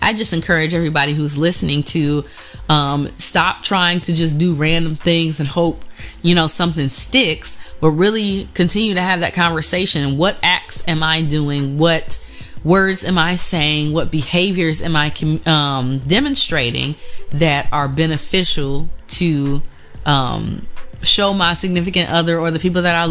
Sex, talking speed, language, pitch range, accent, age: female, 150 wpm, English, 150-180 Hz, American, 20-39